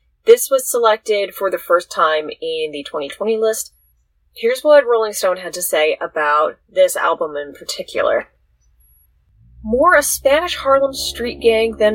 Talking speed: 150 wpm